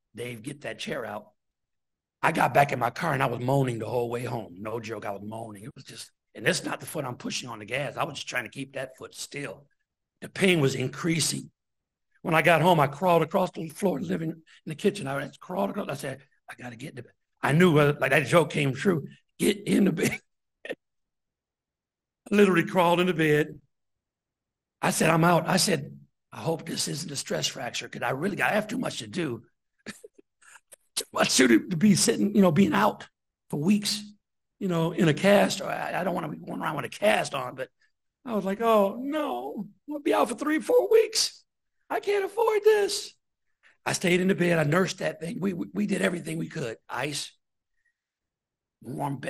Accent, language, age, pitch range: American, English, 60-79, 140-205 Hz